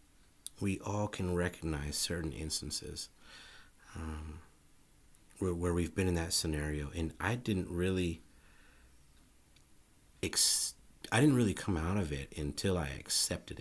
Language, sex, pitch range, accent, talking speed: English, male, 75-90 Hz, American, 130 wpm